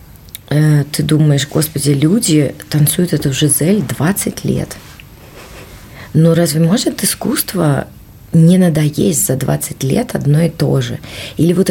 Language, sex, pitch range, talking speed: Russian, female, 140-170 Hz, 130 wpm